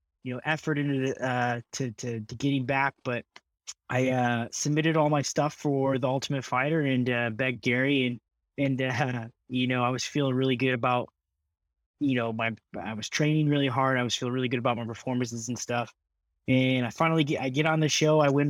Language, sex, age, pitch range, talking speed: English, male, 20-39, 120-145 Hz, 215 wpm